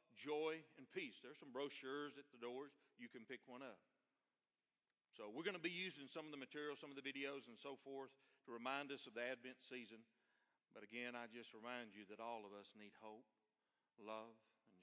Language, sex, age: English, male, 50-69